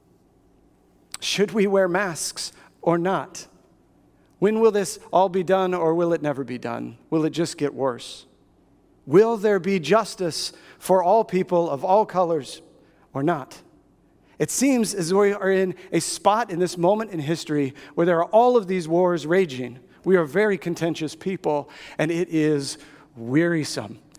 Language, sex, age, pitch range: English, male, 40-59, 155-195 Hz